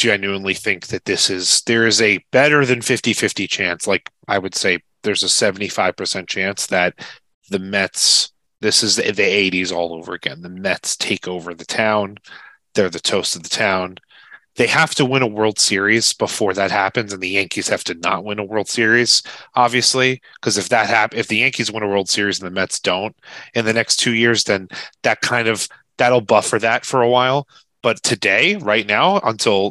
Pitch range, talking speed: 95-120 Hz, 205 wpm